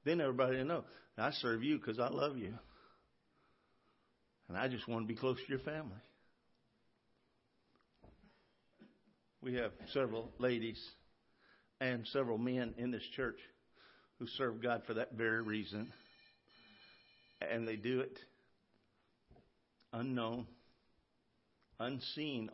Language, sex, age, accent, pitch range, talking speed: English, male, 50-69, American, 115-140 Hz, 115 wpm